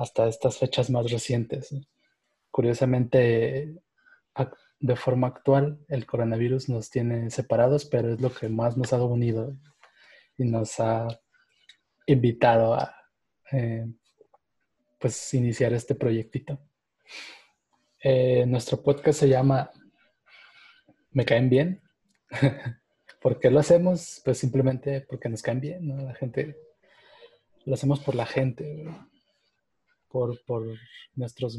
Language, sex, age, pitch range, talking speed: Spanish, male, 20-39, 120-140 Hz, 115 wpm